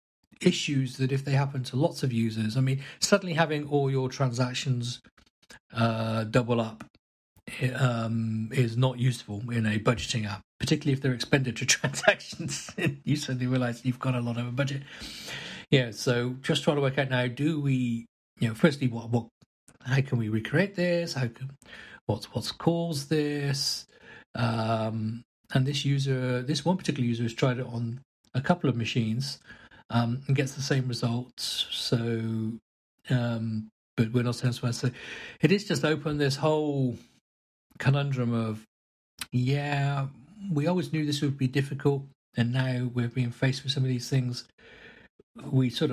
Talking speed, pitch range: 165 wpm, 115-140 Hz